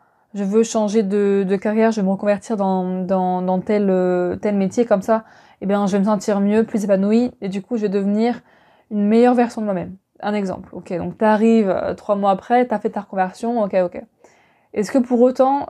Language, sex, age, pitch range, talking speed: French, female, 20-39, 195-230 Hz, 225 wpm